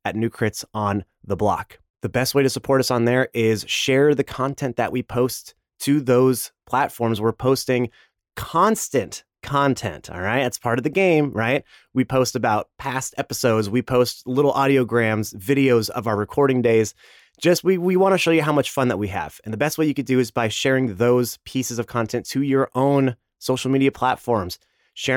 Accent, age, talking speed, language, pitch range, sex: American, 30-49, 200 wpm, English, 115-140 Hz, male